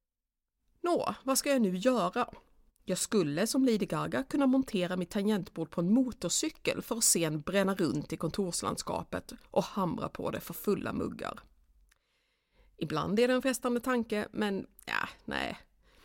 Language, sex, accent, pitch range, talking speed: Swedish, female, native, 175-245 Hz, 155 wpm